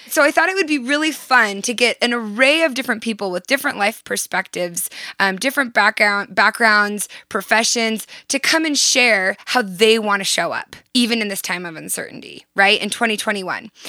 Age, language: 20-39, English